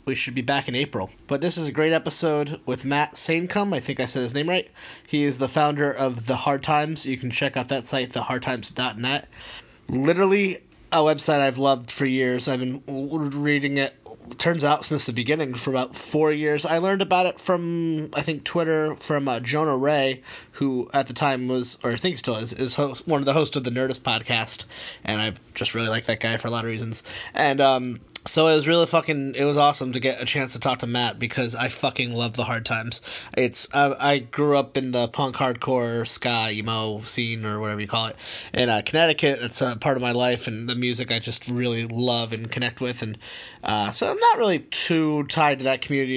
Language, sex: English, male